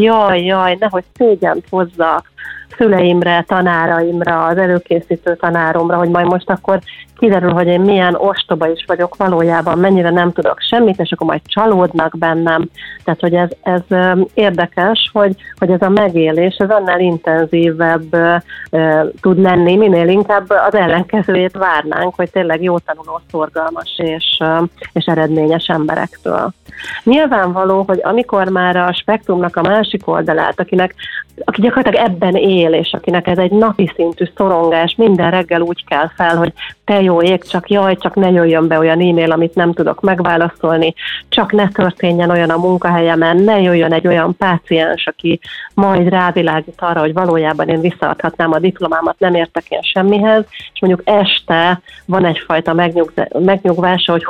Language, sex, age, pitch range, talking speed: Hungarian, female, 40-59, 170-190 Hz, 145 wpm